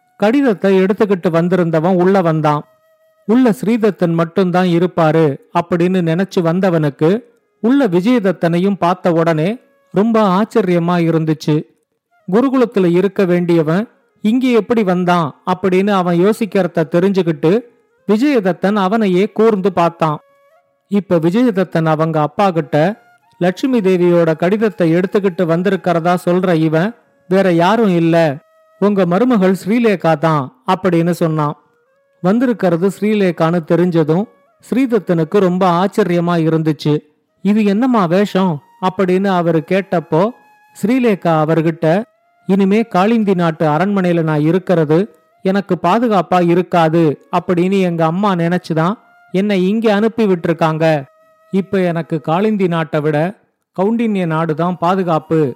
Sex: male